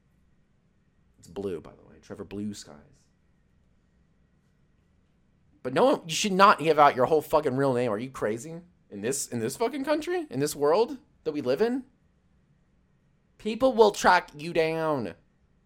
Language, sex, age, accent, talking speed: English, male, 30-49, American, 160 wpm